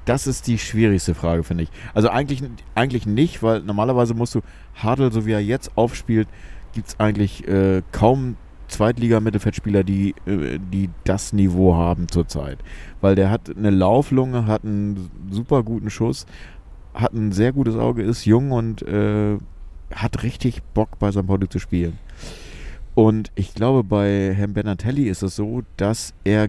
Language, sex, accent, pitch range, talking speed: German, male, German, 90-115 Hz, 165 wpm